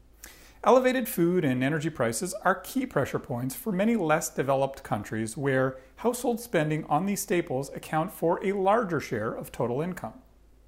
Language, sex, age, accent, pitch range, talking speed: English, male, 40-59, American, 135-185 Hz, 155 wpm